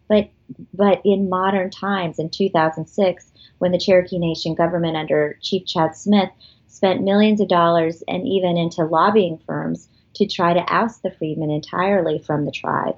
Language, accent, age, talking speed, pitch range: English, American, 30-49, 160 wpm, 165-195 Hz